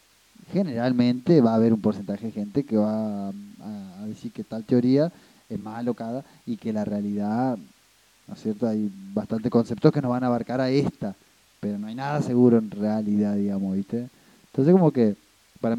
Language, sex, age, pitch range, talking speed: Spanish, male, 20-39, 110-155 Hz, 180 wpm